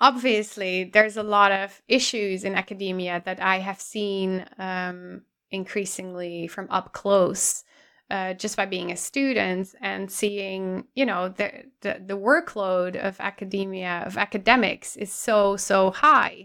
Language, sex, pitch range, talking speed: English, female, 190-230 Hz, 140 wpm